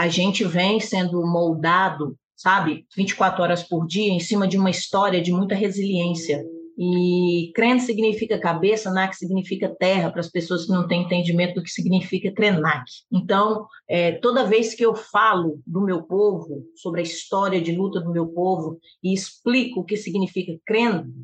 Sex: female